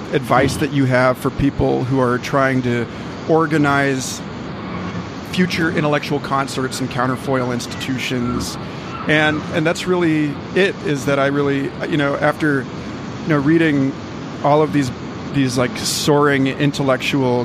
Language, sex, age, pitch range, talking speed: English, male, 40-59, 125-145 Hz, 135 wpm